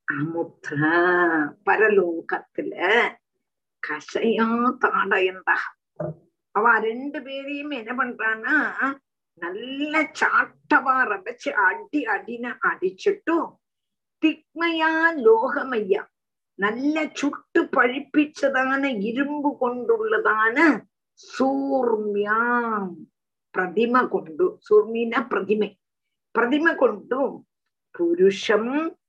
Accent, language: native, Tamil